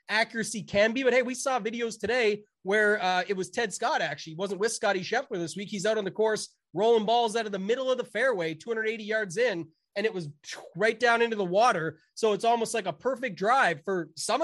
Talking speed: 235 wpm